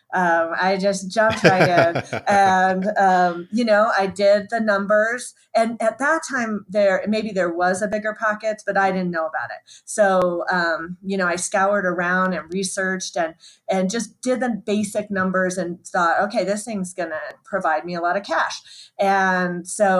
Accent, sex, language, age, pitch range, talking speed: American, female, English, 30-49, 175-205 Hz, 185 wpm